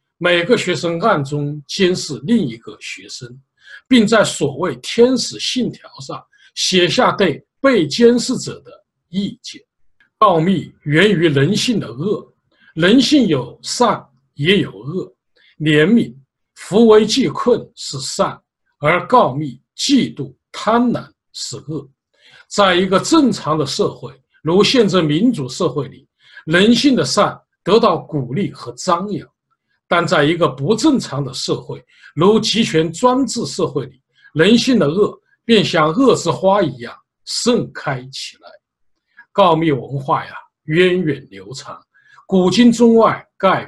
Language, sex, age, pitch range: Chinese, male, 50-69, 145-235 Hz